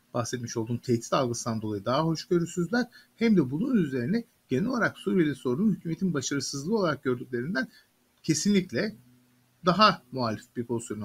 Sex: male